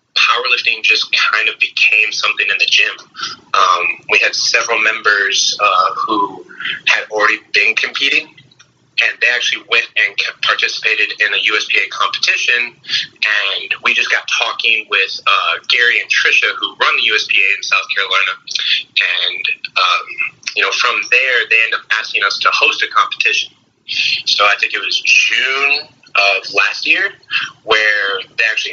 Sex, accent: male, American